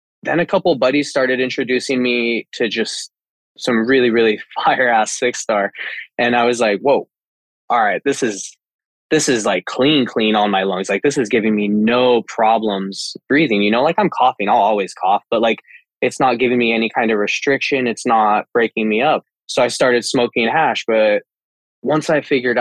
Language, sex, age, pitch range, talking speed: English, male, 20-39, 105-130 Hz, 195 wpm